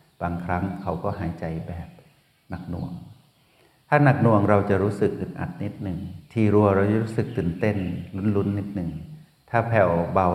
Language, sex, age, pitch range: Thai, male, 60-79, 90-110 Hz